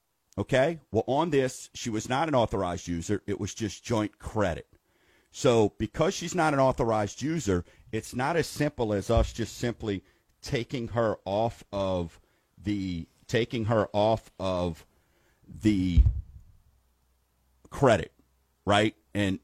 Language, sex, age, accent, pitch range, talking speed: English, male, 50-69, American, 95-130 Hz, 135 wpm